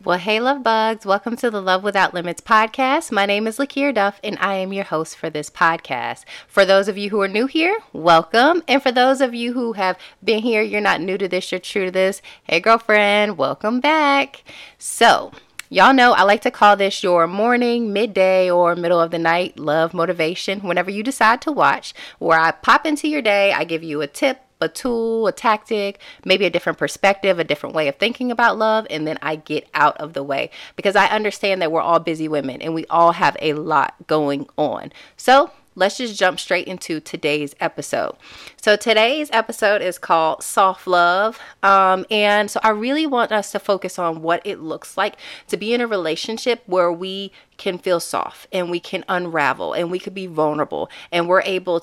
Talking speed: 205 wpm